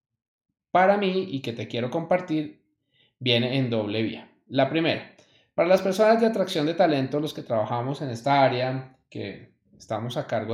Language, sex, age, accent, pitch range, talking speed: Spanish, male, 20-39, Colombian, 120-180 Hz, 170 wpm